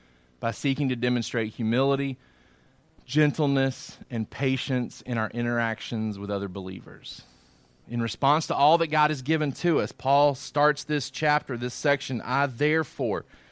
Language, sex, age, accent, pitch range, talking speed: English, male, 30-49, American, 120-160 Hz, 140 wpm